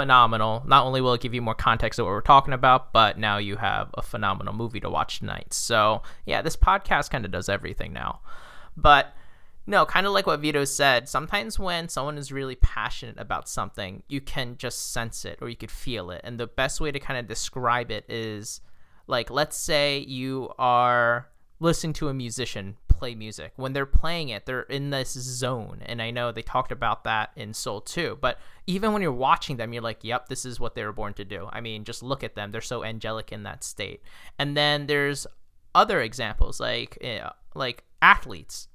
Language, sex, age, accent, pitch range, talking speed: English, male, 20-39, American, 110-145 Hz, 210 wpm